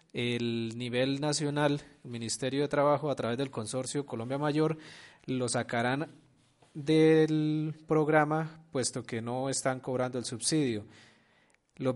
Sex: male